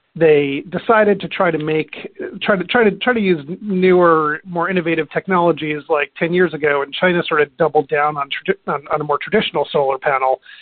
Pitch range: 145-185 Hz